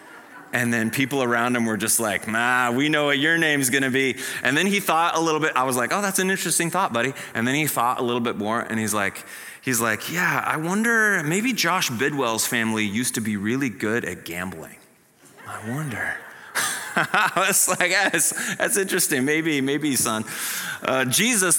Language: English